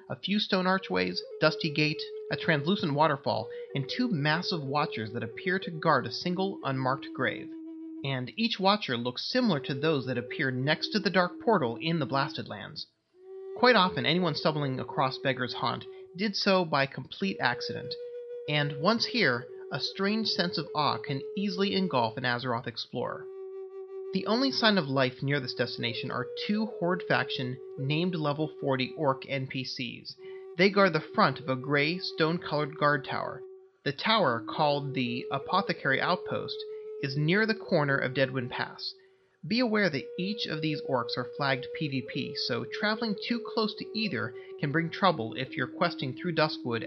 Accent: American